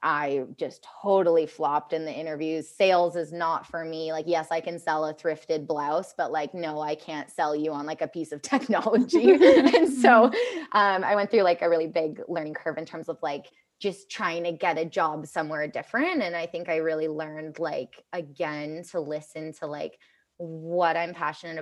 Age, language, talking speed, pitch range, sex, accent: 20-39, English, 200 wpm, 160-180 Hz, female, American